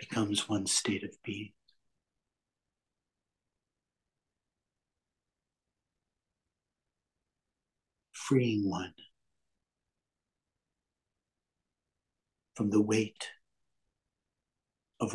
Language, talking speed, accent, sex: English, 45 wpm, American, male